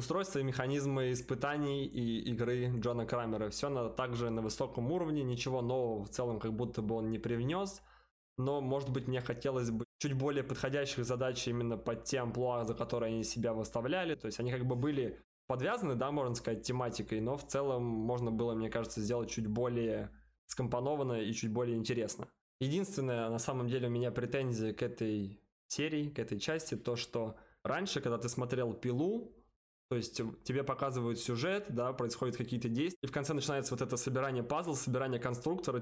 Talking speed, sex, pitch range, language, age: 180 wpm, male, 115-135 Hz, Russian, 20-39